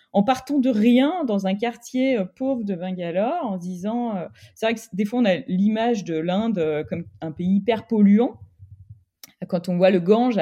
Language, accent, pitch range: French, French, 185-250 Hz